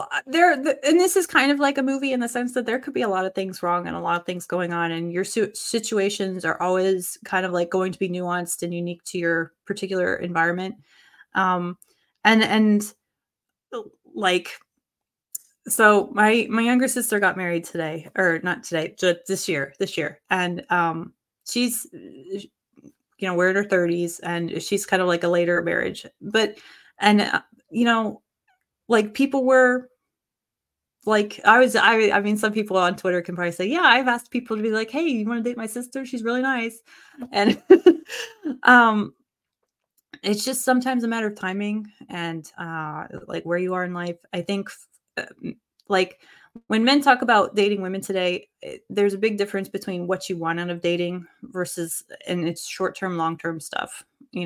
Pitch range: 175-235 Hz